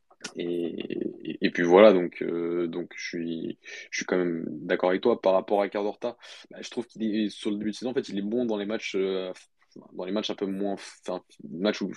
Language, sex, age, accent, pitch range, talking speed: French, male, 20-39, French, 85-100 Hz, 240 wpm